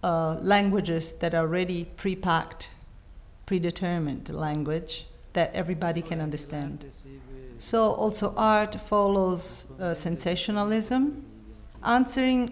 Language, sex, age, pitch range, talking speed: English, female, 50-69, 160-195 Hz, 95 wpm